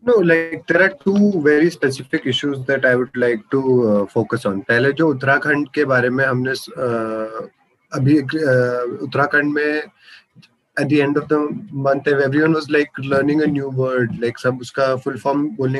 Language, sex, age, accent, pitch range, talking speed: Hindi, male, 20-39, native, 125-150 Hz, 165 wpm